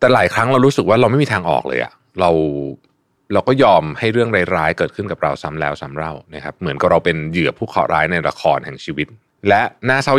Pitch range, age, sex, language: 80-115 Hz, 20-39, male, Thai